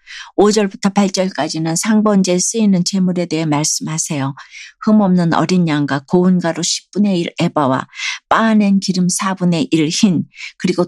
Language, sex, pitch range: Korean, female, 170-205 Hz